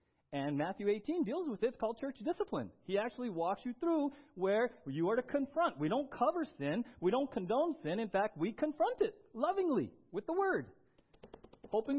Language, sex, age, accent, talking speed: English, male, 40-59, American, 190 wpm